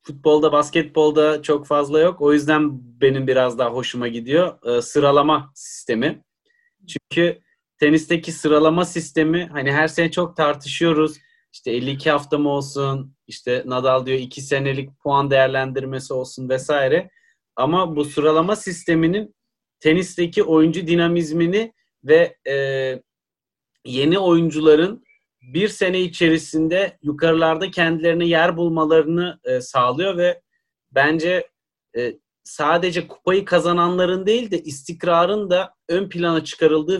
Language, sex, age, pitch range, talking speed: Turkish, male, 30-49, 145-175 Hz, 110 wpm